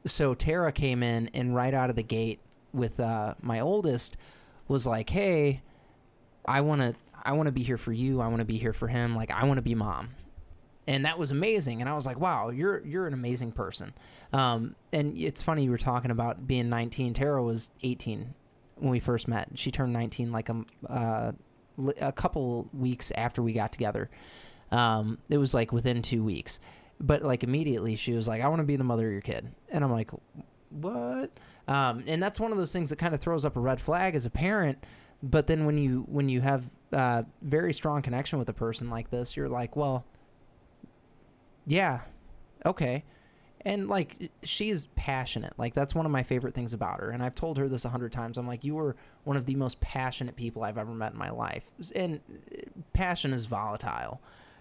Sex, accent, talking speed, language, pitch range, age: male, American, 210 wpm, English, 115-145 Hz, 20-39